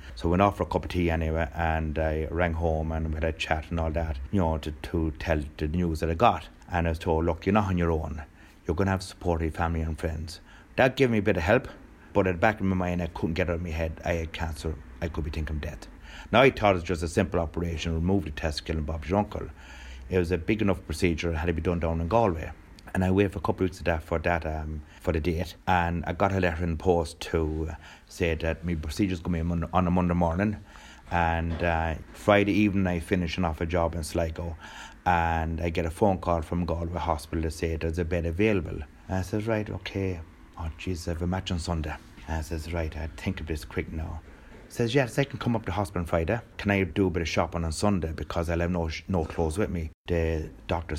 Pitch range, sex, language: 80-95 Hz, male, English